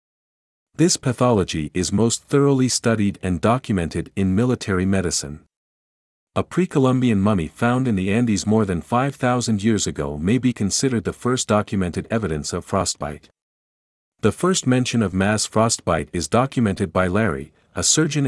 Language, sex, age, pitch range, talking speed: English, male, 50-69, 90-120 Hz, 145 wpm